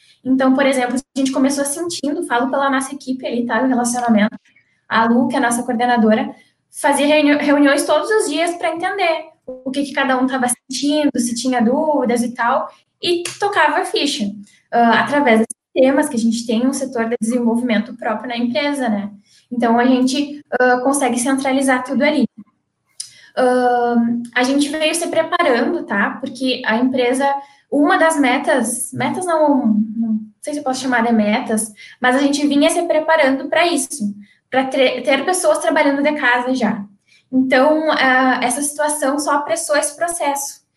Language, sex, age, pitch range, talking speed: Portuguese, female, 10-29, 240-295 Hz, 165 wpm